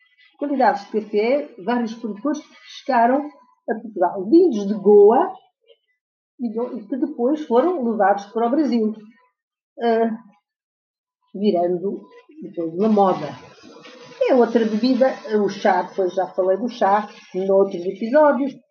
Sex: female